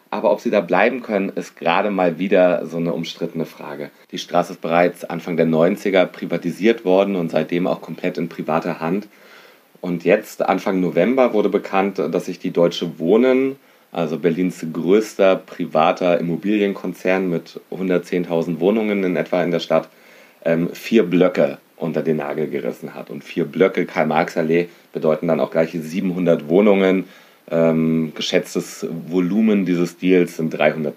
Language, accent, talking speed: German, German, 150 wpm